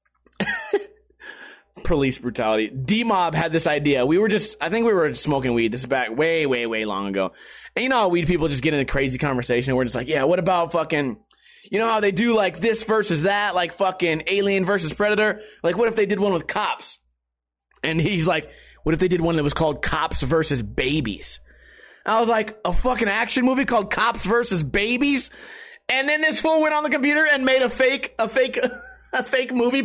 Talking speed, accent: 215 wpm, American